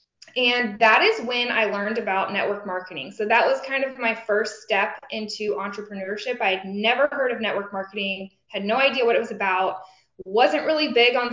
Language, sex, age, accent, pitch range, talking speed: English, female, 20-39, American, 200-245 Hz, 195 wpm